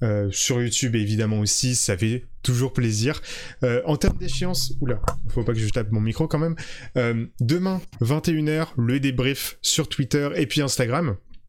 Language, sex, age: French, male, 20-39